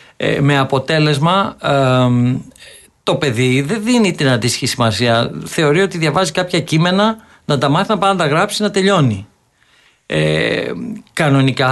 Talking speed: 145 wpm